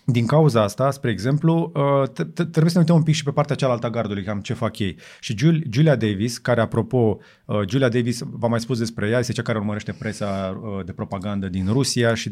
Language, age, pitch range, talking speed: Romanian, 30-49, 105-140 Hz, 205 wpm